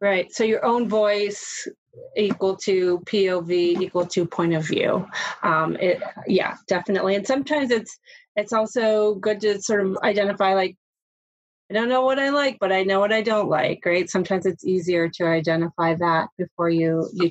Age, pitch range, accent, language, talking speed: 30-49, 180-225 Hz, American, English, 175 wpm